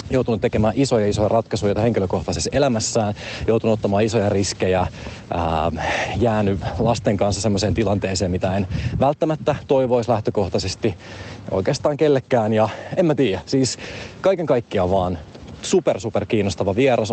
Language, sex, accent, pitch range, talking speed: Finnish, male, native, 100-130 Hz, 125 wpm